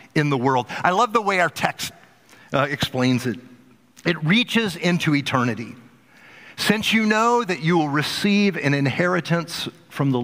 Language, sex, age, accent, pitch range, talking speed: English, male, 50-69, American, 140-215 Hz, 160 wpm